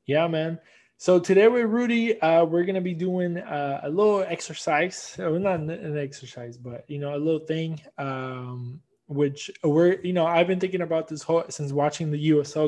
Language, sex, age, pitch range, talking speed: English, male, 20-39, 140-165 Hz, 195 wpm